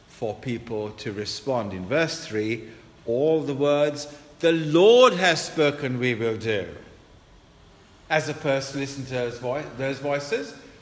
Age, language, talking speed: 50-69, English, 135 wpm